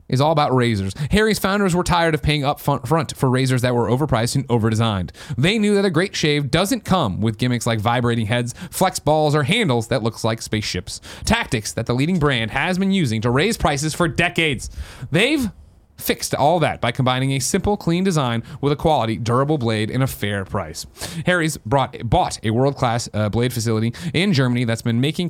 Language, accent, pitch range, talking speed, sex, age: English, American, 115-165 Hz, 200 wpm, male, 30-49